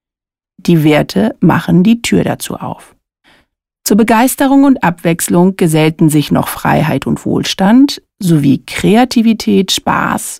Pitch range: 165-220 Hz